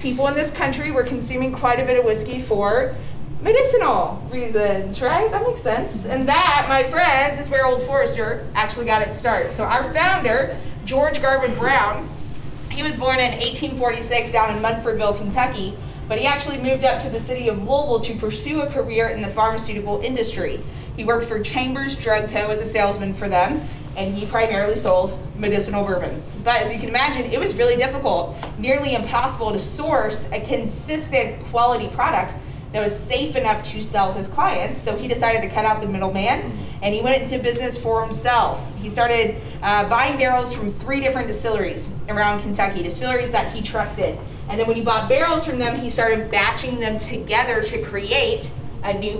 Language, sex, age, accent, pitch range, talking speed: English, female, 20-39, American, 205-260 Hz, 185 wpm